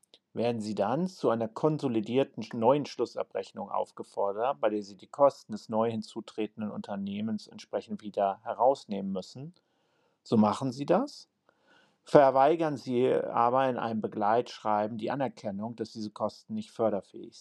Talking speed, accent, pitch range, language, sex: 135 wpm, German, 110-140 Hz, German, male